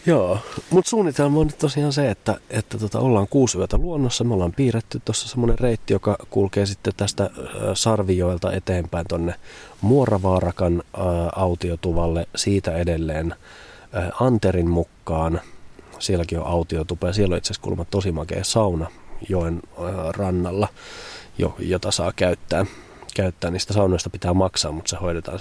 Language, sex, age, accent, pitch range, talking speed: Finnish, male, 30-49, native, 85-105 Hz, 145 wpm